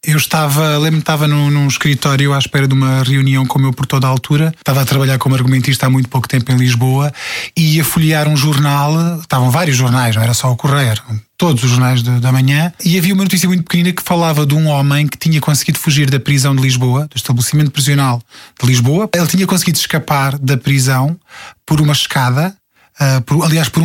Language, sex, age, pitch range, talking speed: Portuguese, male, 20-39, 140-180 Hz, 215 wpm